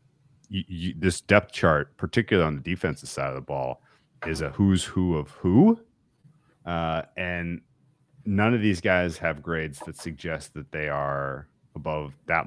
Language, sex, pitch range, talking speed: English, male, 75-90 Hz, 155 wpm